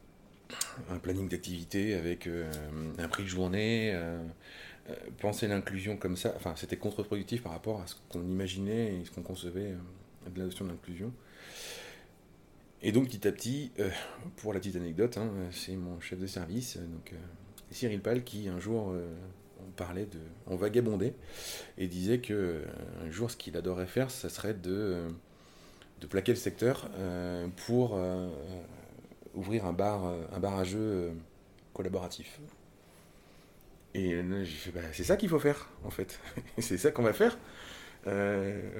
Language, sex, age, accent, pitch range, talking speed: French, male, 30-49, French, 90-115 Hz, 165 wpm